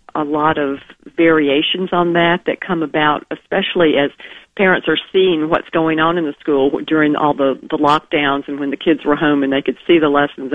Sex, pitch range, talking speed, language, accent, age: female, 145-170 Hz, 210 wpm, English, American, 50-69